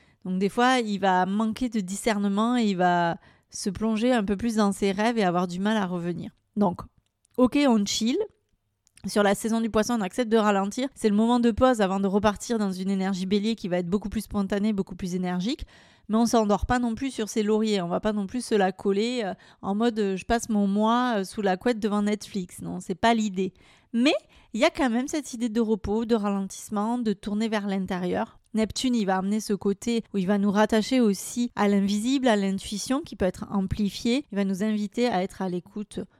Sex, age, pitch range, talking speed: female, 30-49, 195-230 Hz, 225 wpm